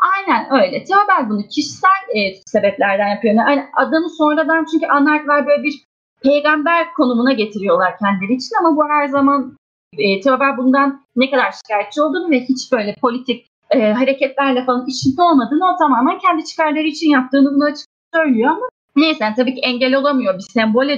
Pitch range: 245-300 Hz